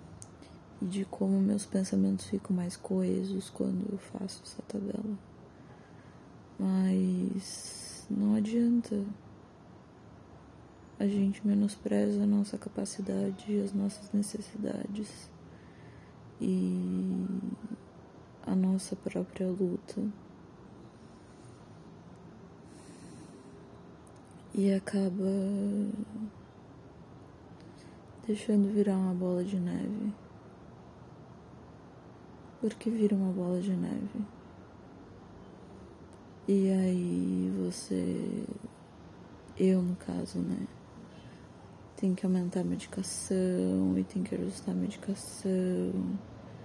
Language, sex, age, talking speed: Portuguese, female, 20-39, 80 wpm